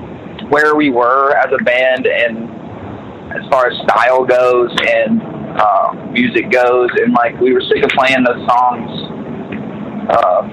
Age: 20-39